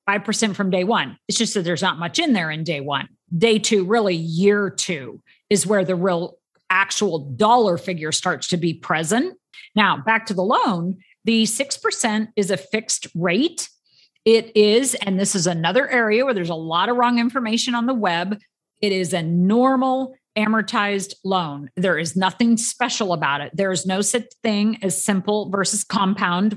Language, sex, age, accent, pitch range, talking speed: English, female, 50-69, American, 185-235 Hz, 180 wpm